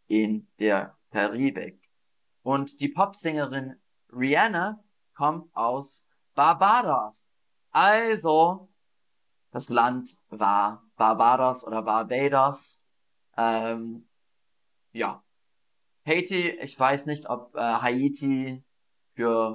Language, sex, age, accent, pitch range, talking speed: German, male, 30-49, German, 115-165 Hz, 85 wpm